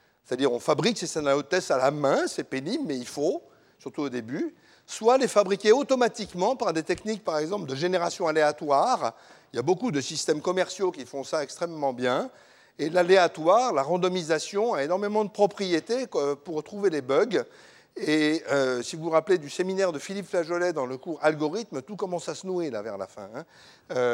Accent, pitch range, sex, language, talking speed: French, 140-200 Hz, male, French, 190 wpm